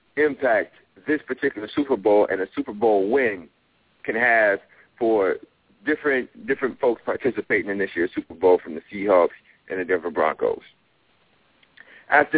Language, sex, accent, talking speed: English, male, American, 145 wpm